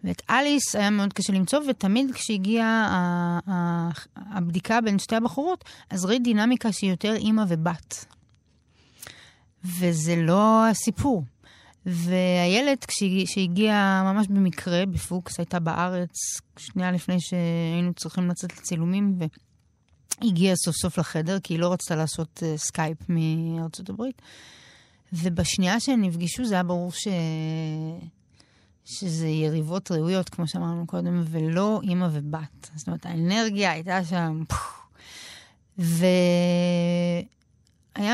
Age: 30-49